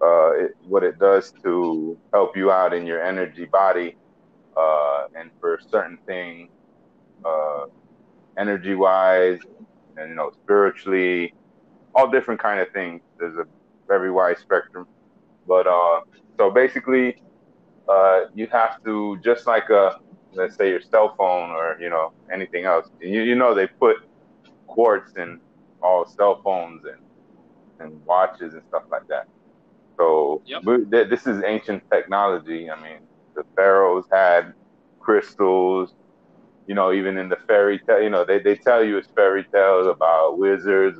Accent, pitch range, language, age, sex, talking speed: American, 90-125 Hz, English, 30-49, male, 145 wpm